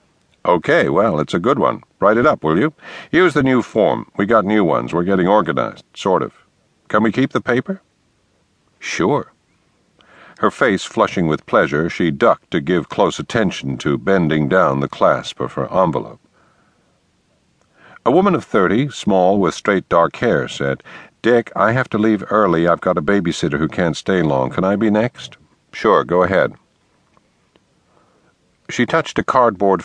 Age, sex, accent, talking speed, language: 60-79, male, American, 170 wpm, English